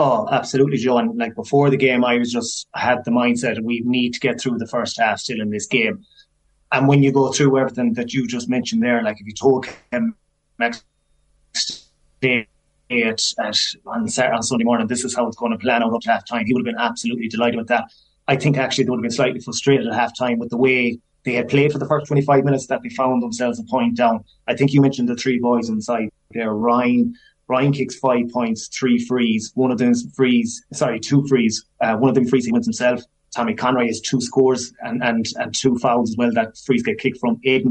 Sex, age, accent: male, 20-39, Irish